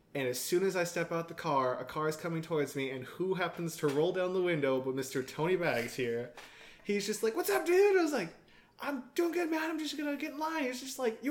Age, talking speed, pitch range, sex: 20-39, 275 wpm, 145-210 Hz, male